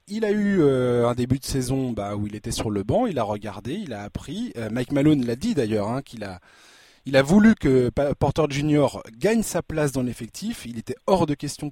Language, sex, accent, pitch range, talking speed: French, male, French, 115-155 Hz, 235 wpm